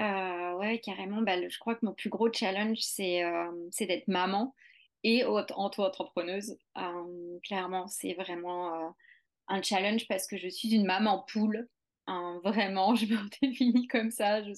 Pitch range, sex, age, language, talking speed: 180-220 Hz, female, 30-49, French, 175 wpm